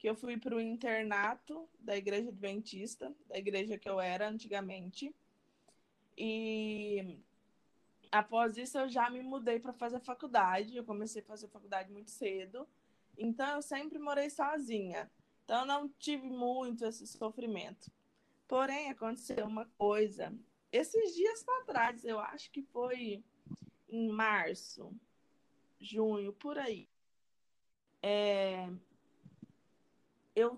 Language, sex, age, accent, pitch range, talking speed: Portuguese, female, 20-39, Brazilian, 210-255 Hz, 120 wpm